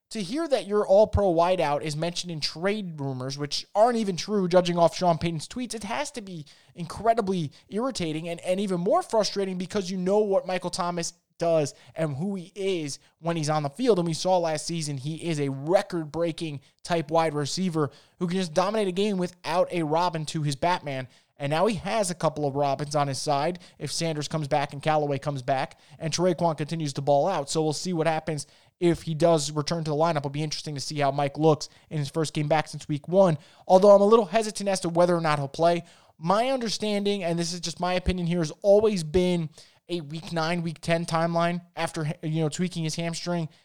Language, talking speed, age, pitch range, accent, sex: English, 220 wpm, 20-39, 155-185 Hz, American, male